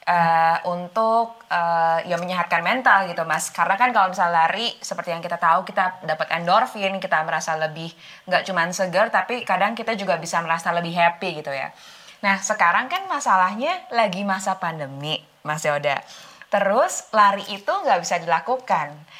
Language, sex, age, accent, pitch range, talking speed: Indonesian, female, 20-39, native, 165-215 Hz, 160 wpm